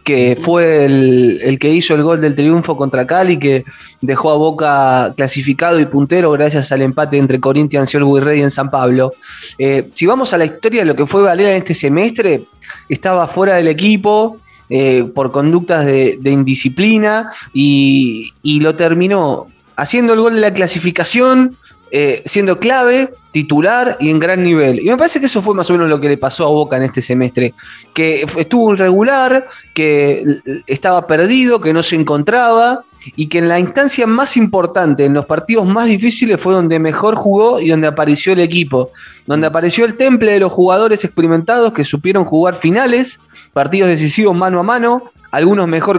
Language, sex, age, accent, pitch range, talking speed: Spanish, male, 20-39, Argentinian, 140-200 Hz, 185 wpm